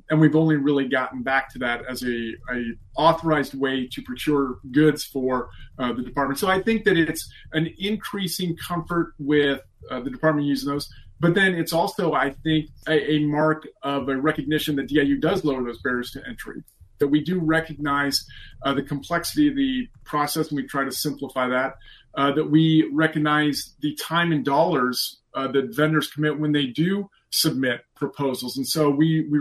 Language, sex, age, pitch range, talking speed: English, male, 30-49, 130-155 Hz, 185 wpm